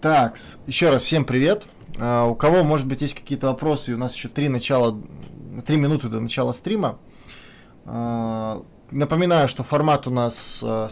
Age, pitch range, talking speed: 20-39, 120-145 Hz, 165 wpm